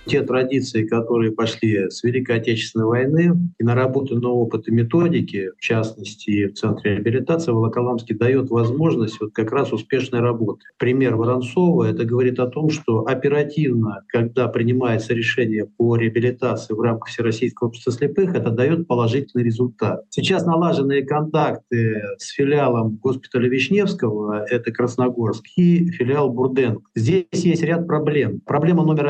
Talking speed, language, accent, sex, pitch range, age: 135 wpm, Russian, native, male, 115-145 Hz, 50-69